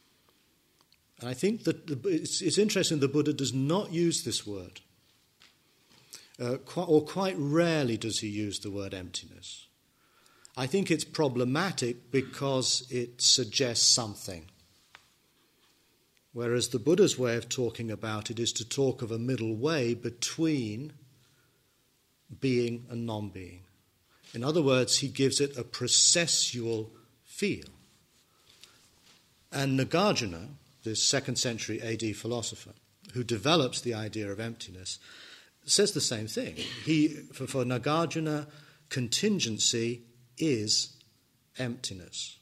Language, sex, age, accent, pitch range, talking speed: English, male, 50-69, British, 115-140 Hz, 115 wpm